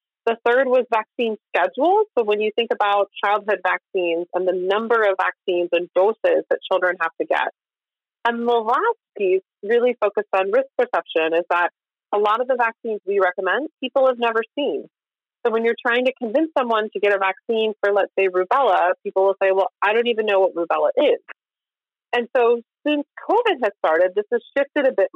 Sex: female